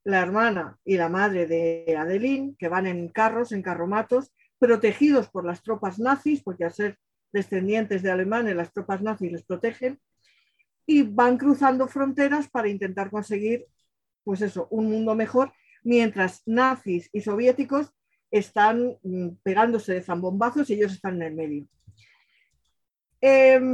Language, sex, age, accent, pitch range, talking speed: Spanish, female, 40-59, Spanish, 185-235 Hz, 140 wpm